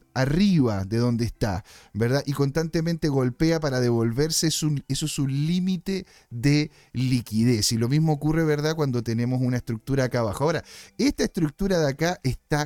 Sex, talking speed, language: male, 165 wpm, Spanish